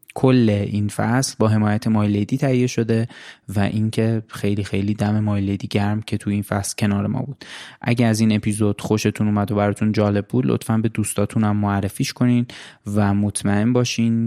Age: 20-39